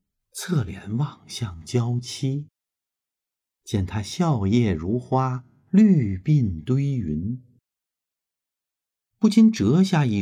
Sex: male